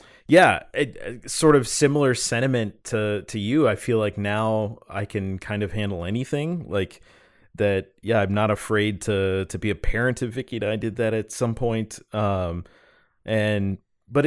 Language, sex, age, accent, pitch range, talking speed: English, male, 30-49, American, 95-115 Hz, 180 wpm